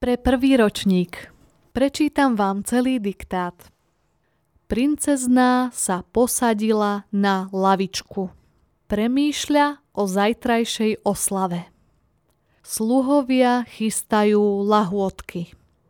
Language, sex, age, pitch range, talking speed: Slovak, female, 20-39, 185-245 Hz, 70 wpm